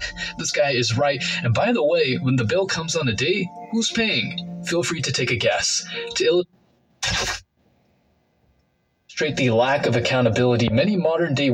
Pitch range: 120-185 Hz